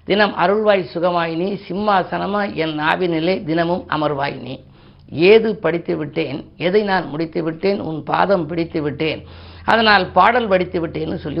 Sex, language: female, Tamil